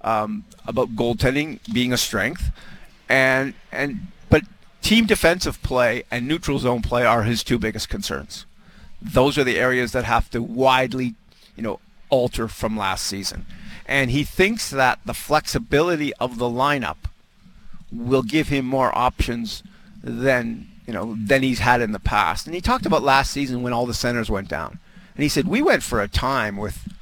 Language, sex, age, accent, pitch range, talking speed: English, male, 50-69, American, 120-160 Hz, 175 wpm